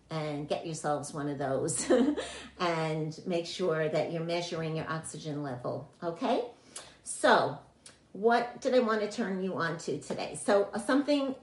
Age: 50-69